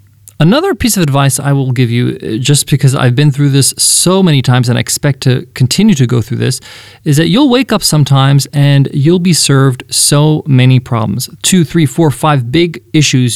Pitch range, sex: 120-160 Hz, male